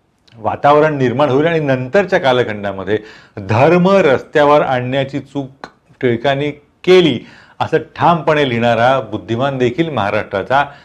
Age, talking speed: 40-59, 105 wpm